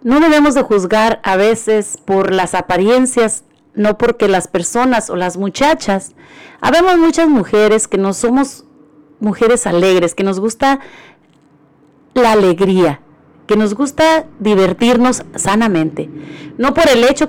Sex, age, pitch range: female, 40-59, 190-255 Hz